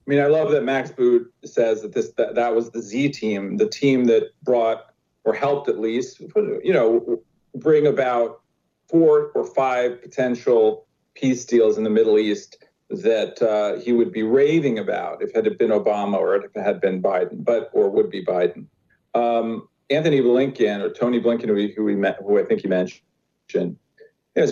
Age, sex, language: 40-59, male, English